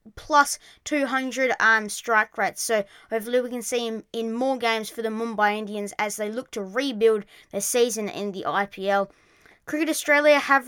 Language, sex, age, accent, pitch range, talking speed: English, female, 20-39, Australian, 225-260 Hz, 175 wpm